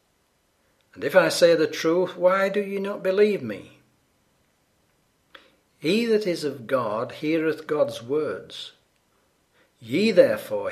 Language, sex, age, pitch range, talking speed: English, male, 60-79, 125-200 Hz, 125 wpm